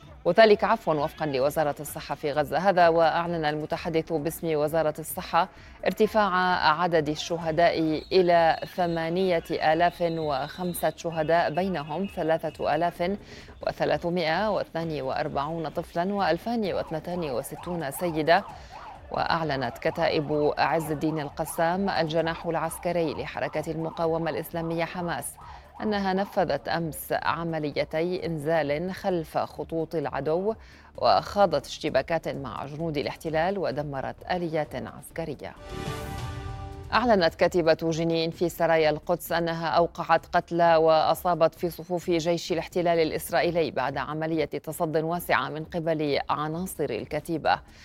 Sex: female